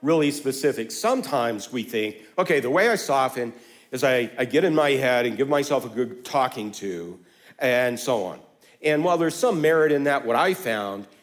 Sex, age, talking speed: male, 50-69, 200 wpm